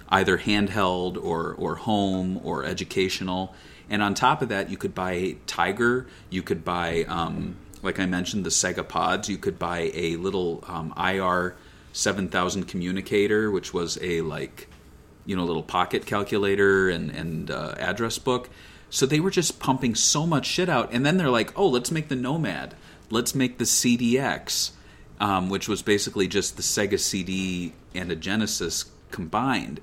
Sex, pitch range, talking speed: male, 90-130 Hz, 170 wpm